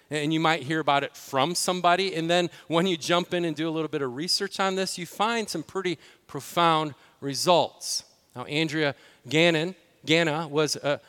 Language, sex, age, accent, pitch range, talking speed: English, male, 40-59, American, 150-185 Hz, 190 wpm